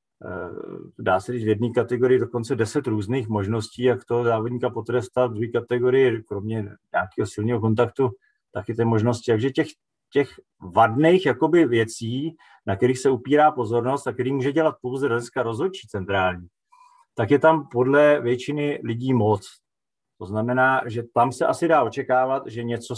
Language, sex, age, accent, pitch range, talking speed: Czech, male, 40-59, native, 110-130 Hz, 150 wpm